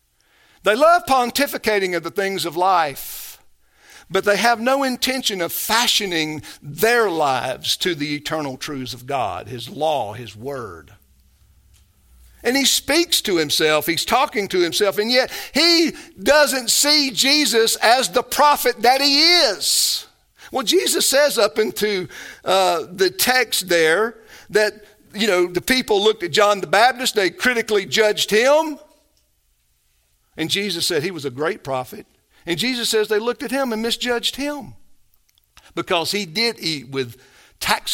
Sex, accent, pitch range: male, American, 145-235 Hz